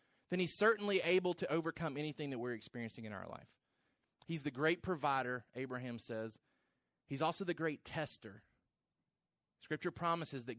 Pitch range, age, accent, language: 130-180 Hz, 30-49, American, English